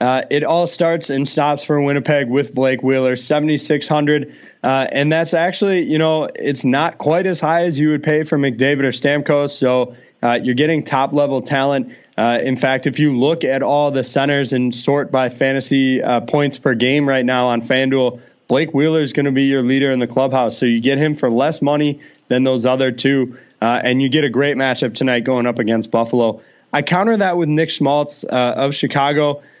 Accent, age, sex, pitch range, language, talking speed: American, 20-39, male, 130-150 Hz, English, 205 wpm